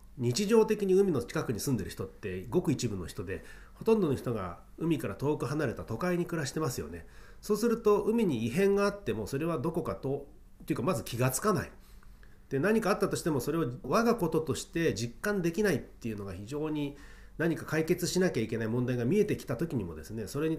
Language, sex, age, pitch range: Japanese, male, 40-59, 110-170 Hz